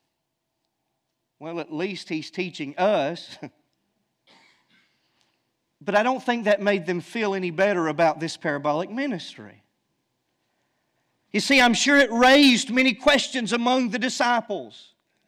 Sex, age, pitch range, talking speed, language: male, 40-59, 215-285 Hz, 120 wpm, English